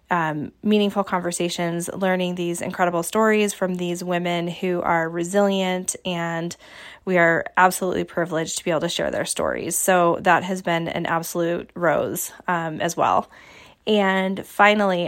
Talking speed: 145 wpm